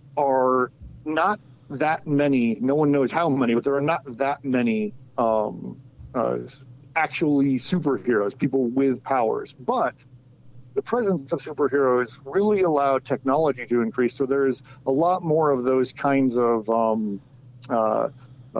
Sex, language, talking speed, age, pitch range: male, English, 140 wpm, 50-69, 125-145 Hz